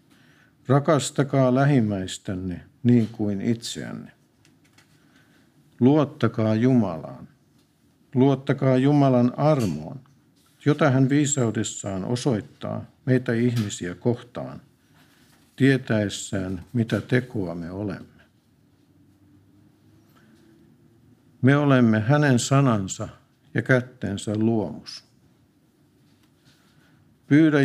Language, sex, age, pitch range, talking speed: Finnish, male, 60-79, 105-135 Hz, 65 wpm